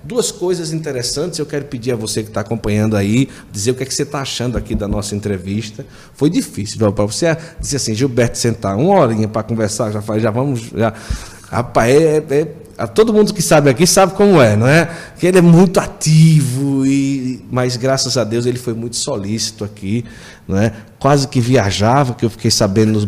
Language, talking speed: Portuguese, 210 wpm